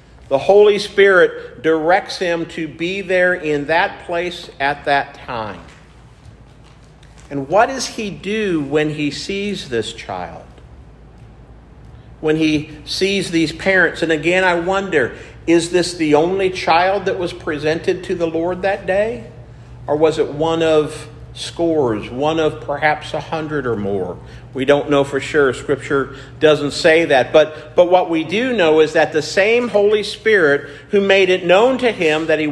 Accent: American